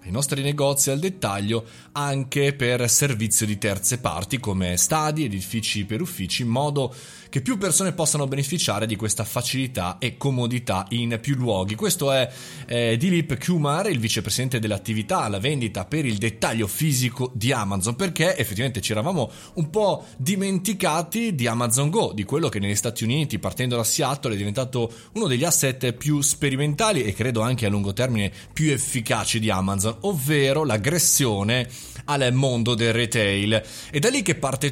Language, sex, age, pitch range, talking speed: Italian, male, 20-39, 110-145 Hz, 160 wpm